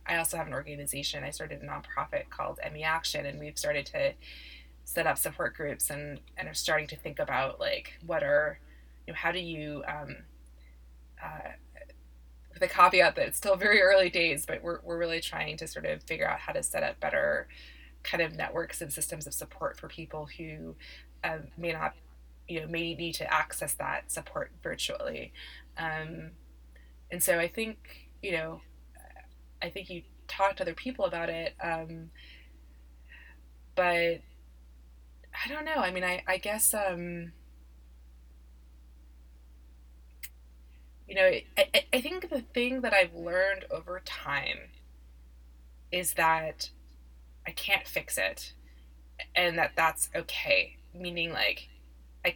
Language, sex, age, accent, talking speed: English, female, 20-39, American, 155 wpm